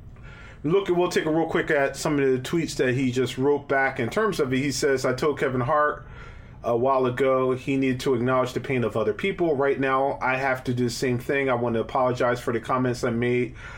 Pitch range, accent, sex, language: 120-140 Hz, American, male, English